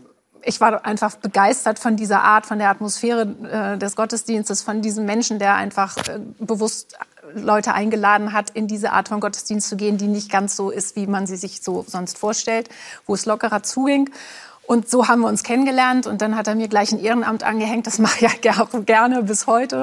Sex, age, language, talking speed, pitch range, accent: female, 30-49, German, 210 wpm, 210-235 Hz, German